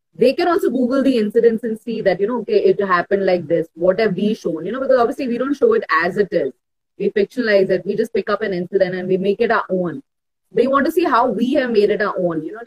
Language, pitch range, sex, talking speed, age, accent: English, 185-250 Hz, female, 280 wpm, 30-49, Indian